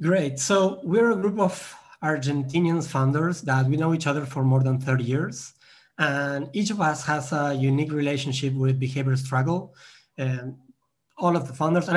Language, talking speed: English, 175 wpm